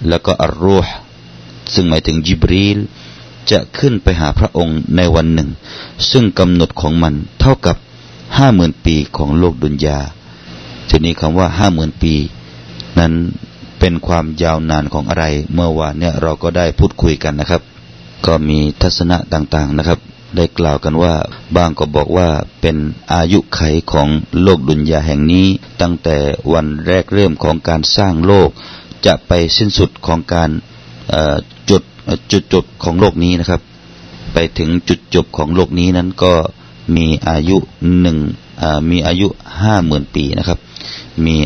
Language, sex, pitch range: Thai, male, 75-90 Hz